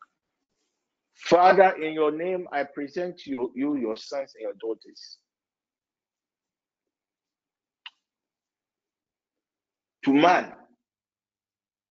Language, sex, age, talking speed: English, male, 50-69, 75 wpm